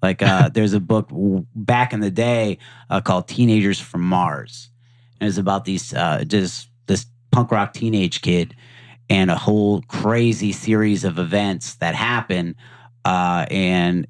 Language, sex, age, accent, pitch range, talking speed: English, male, 30-49, American, 95-120 Hz, 155 wpm